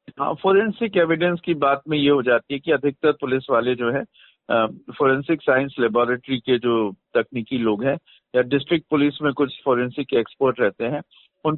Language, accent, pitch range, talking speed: Hindi, native, 135-185 Hz, 175 wpm